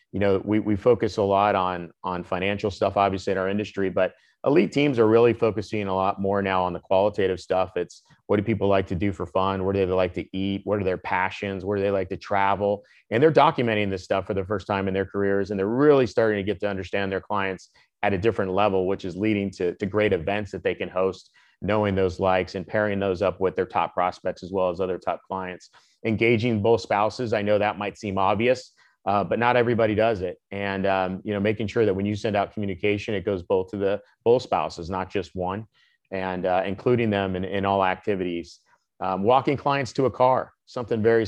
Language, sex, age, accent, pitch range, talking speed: English, male, 30-49, American, 95-110 Hz, 235 wpm